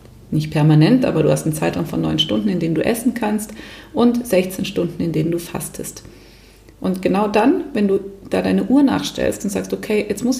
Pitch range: 175-215 Hz